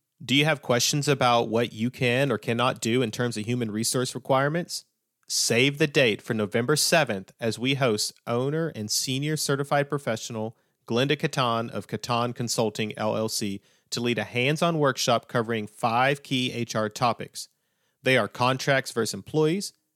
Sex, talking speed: male, 155 wpm